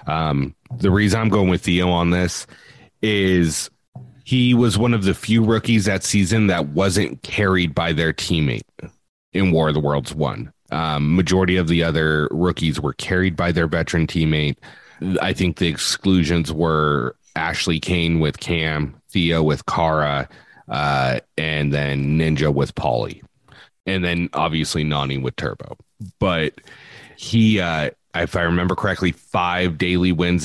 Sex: male